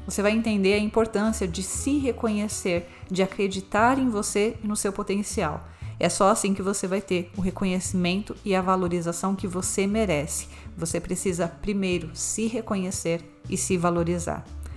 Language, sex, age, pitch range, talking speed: Portuguese, female, 30-49, 180-225 Hz, 160 wpm